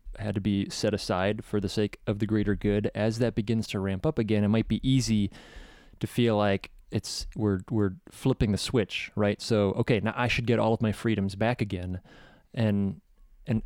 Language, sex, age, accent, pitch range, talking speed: English, male, 20-39, American, 100-115 Hz, 205 wpm